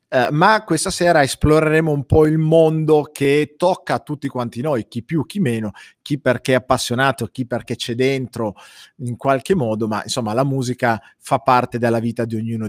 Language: Italian